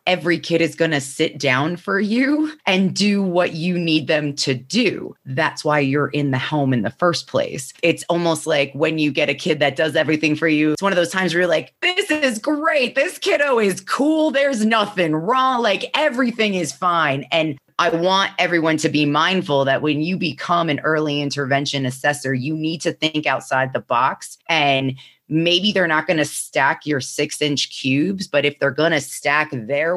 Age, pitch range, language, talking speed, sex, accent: 20-39, 145-185 Hz, English, 205 wpm, female, American